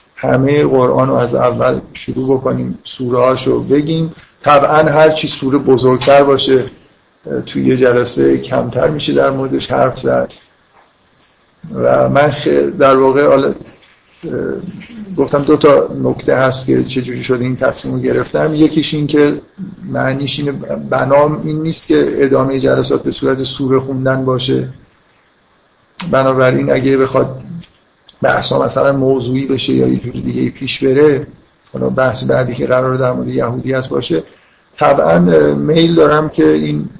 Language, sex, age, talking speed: Persian, male, 50-69, 130 wpm